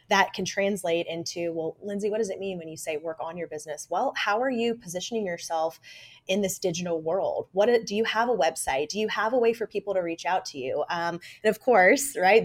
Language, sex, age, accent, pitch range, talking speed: English, female, 20-39, American, 170-225 Hz, 240 wpm